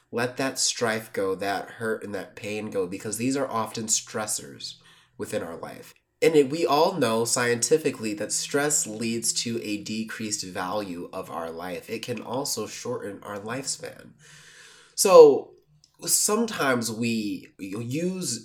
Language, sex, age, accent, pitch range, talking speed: English, male, 20-39, American, 110-175 Hz, 140 wpm